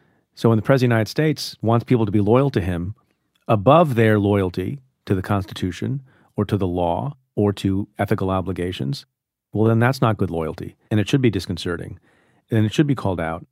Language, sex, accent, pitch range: English, male, American, 100-125 Hz